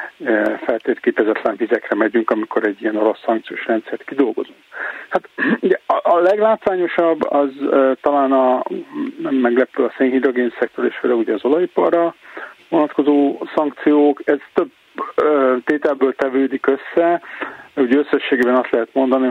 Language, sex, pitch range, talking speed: Hungarian, male, 125-150 Hz, 120 wpm